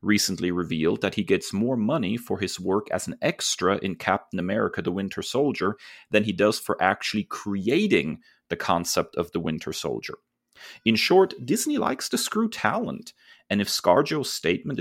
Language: English